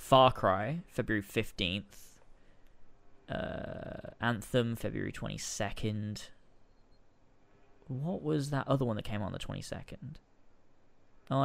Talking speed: 100 wpm